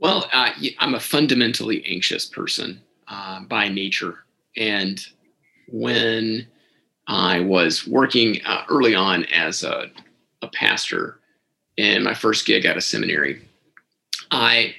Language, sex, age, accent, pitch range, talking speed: English, male, 30-49, American, 105-135 Hz, 120 wpm